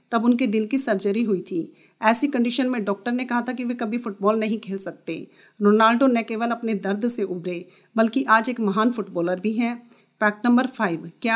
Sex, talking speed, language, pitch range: female, 205 wpm, Hindi, 195-240 Hz